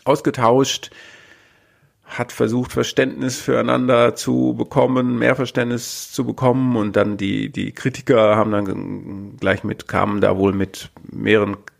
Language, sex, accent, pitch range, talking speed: German, male, German, 100-120 Hz, 125 wpm